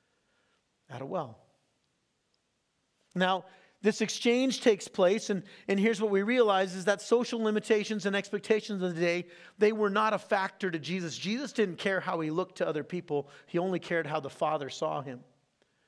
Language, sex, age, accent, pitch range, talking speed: English, male, 40-59, American, 160-205 Hz, 180 wpm